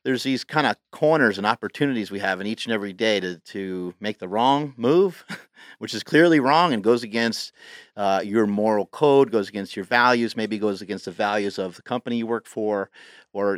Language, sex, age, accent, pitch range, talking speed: English, male, 40-59, American, 105-130 Hz, 210 wpm